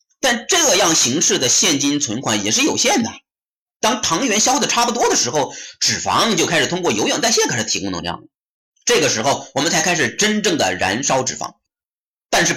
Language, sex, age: Chinese, male, 30-49